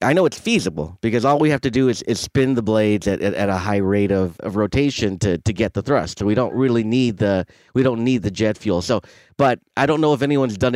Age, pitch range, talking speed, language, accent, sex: 30-49, 95-120 Hz, 275 wpm, English, American, male